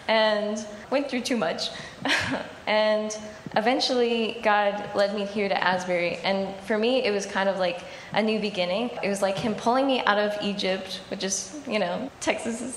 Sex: female